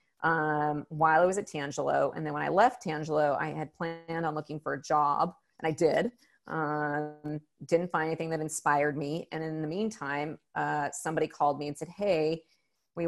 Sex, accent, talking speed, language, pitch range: female, American, 195 wpm, English, 150-165 Hz